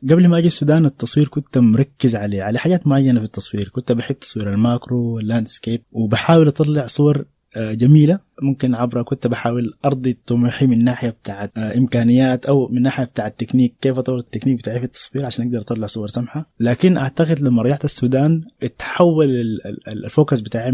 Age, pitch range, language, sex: 20-39, 115-140 Hz, Arabic, male